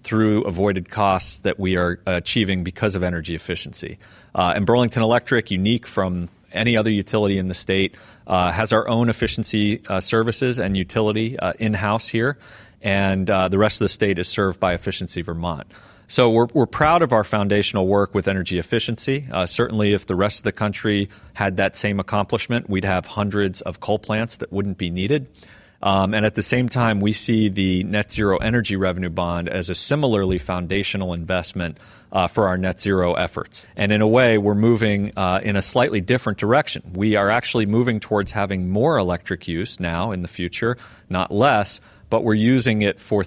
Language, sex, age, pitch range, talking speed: English, male, 40-59, 95-110 Hz, 190 wpm